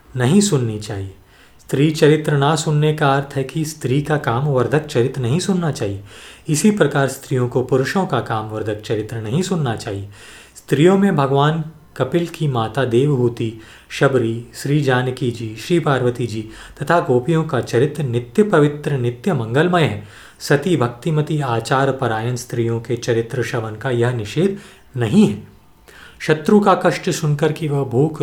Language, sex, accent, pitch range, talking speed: Hindi, male, native, 120-155 Hz, 155 wpm